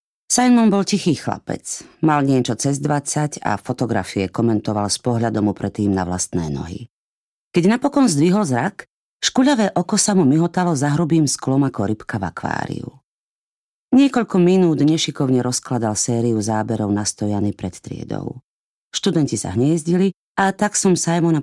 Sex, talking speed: female, 140 wpm